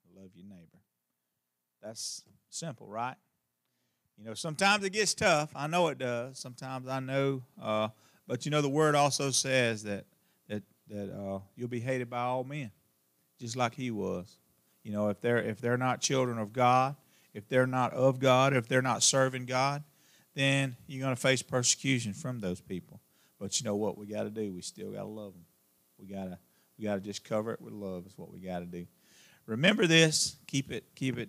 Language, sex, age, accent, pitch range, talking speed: English, male, 40-59, American, 100-130 Hz, 200 wpm